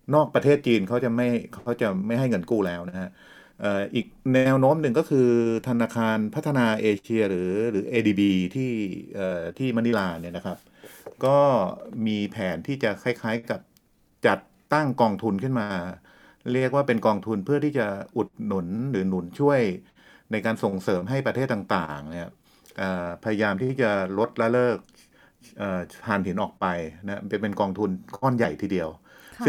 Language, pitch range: Thai, 95-120 Hz